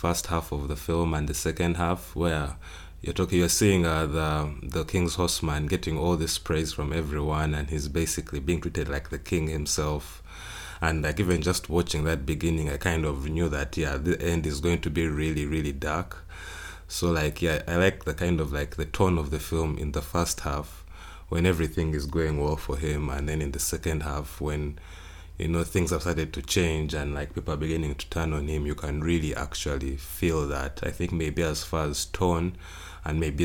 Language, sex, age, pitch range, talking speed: English, male, 30-49, 75-85 Hz, 215 wpm